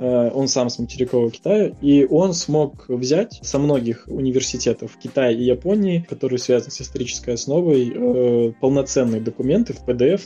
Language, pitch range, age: Russian, 125-140 Hz, 20-39